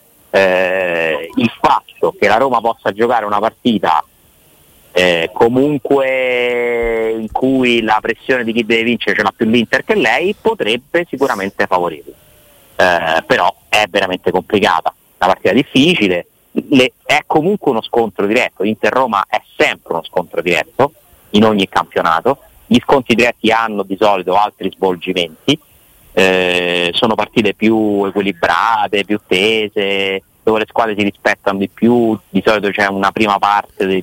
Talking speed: 145 wpm